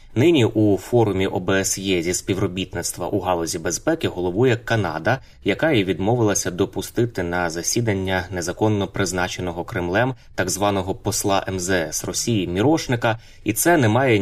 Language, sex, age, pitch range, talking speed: Ukrainian, male, 20-39, 90-110 Hz, 125 wpm